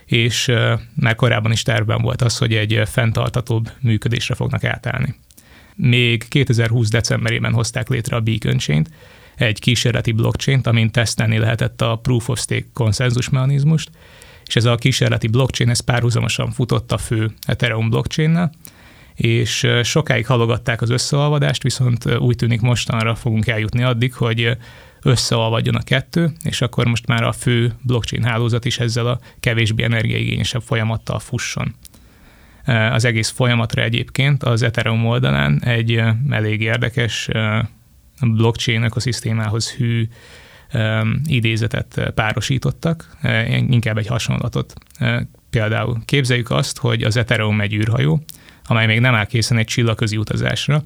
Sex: male